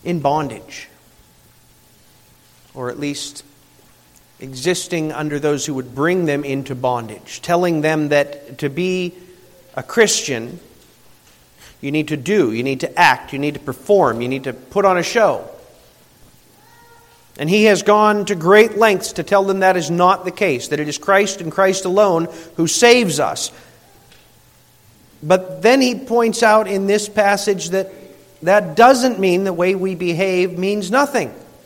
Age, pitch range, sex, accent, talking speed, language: 50-69, 140-205 Hz, male, American, 155 wpm, English